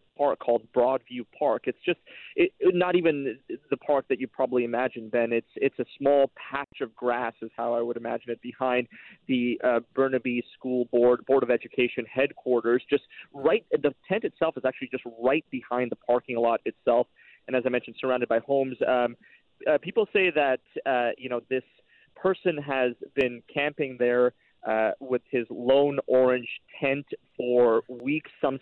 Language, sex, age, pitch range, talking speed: English, male, 30-49, 120-135 Hz, 175 wpm